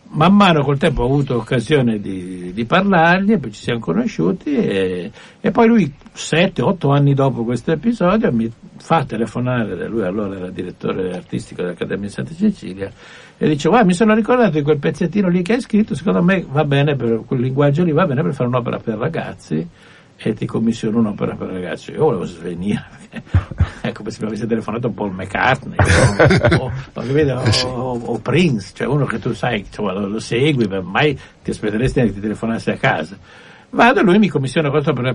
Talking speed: 190 wpm